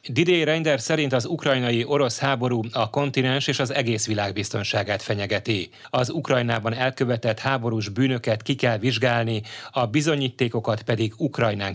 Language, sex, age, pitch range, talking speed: Hungarian, male, 30-49, 110-135 Hz, 140 wpm